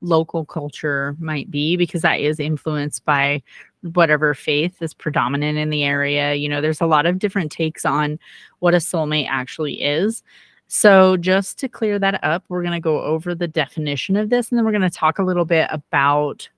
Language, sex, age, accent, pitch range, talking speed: English, female, 30-49, American, 155-185 Hz, 200 wpm